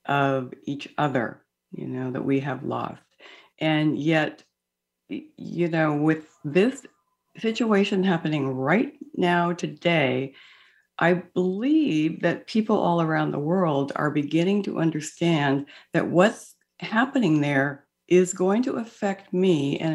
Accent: American